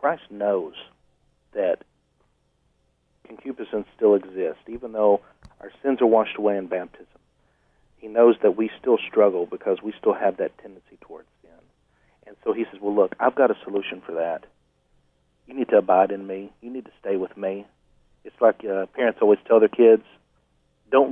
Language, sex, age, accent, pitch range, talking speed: English, male, 40-59, American, 100-125 Hz, 175 wpm